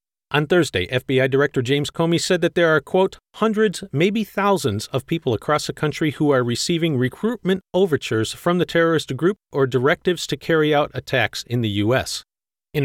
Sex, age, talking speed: male, 40-59, 175 wpm